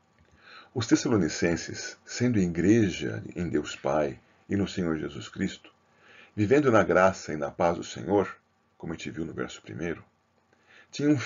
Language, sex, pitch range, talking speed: Portuguese, male, 95-145 Hz, 150 wpm